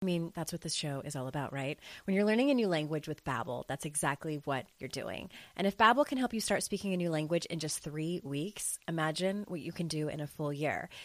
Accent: American